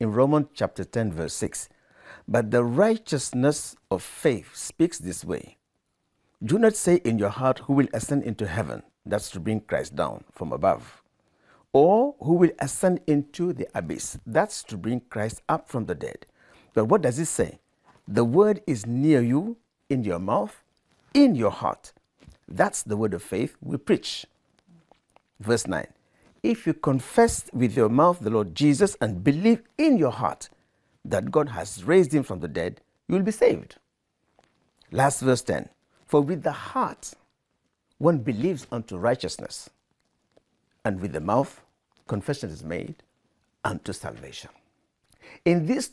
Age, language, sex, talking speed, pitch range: 60-79, English, male, 155 wpm, 115-175 Hz